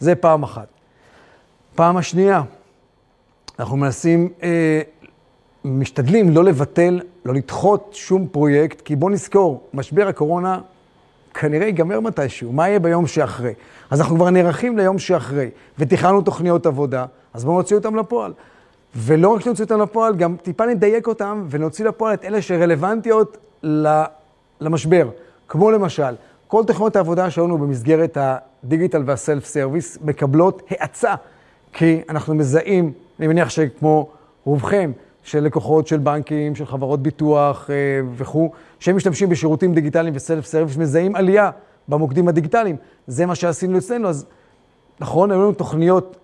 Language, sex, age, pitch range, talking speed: Hebrew, male, 40-59, 150-185 Hz, 130 wpm